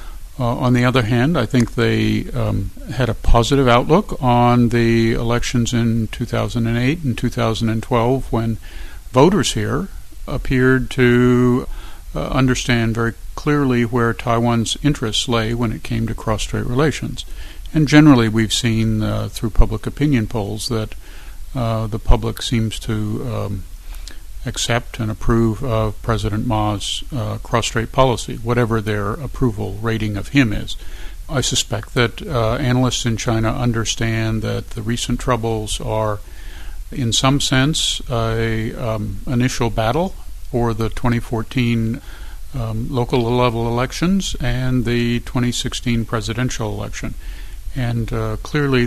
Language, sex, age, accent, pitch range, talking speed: English, male, 50-69, American, 110-125 Hz, 130 wpm